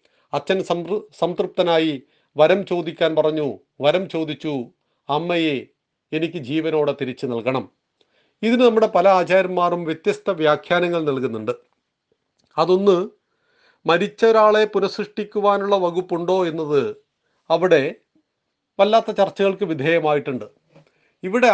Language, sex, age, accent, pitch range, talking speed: Malayalam, male, 40-59, native, 160-200 Hz, 85 wpm